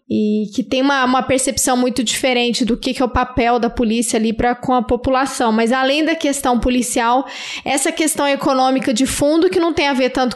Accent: Brazilian